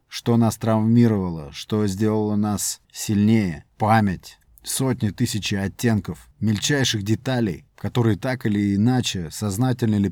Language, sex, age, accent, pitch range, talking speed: Russian, male, 30-49, native, 100-125 Hz, 115 wpm